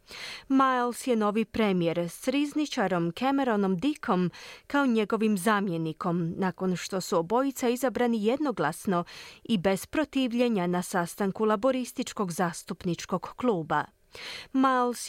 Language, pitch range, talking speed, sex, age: Croatian, 180-260 Hz, 105 wpm, female, 30-49